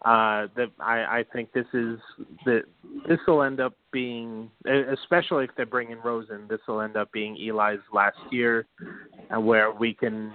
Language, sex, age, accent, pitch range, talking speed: English, male, 30-49, American, 110-130 Hz, 175 wpm